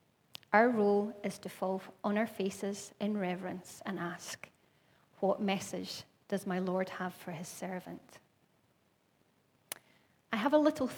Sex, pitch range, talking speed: female, 190-225 Hz, 135 wpm